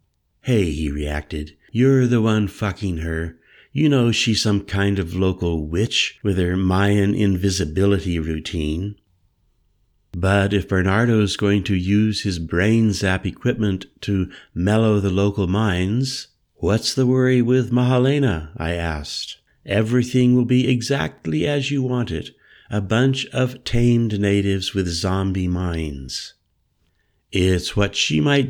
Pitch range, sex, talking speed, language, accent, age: 85-115 Hz, male, 130 wpm, English, American, 60-79